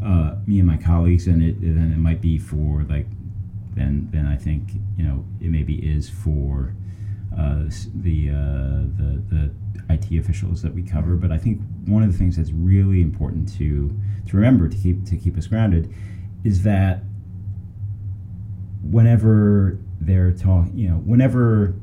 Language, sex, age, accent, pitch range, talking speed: English, male, 30-49, American, 85-100 Hz, 165 wpm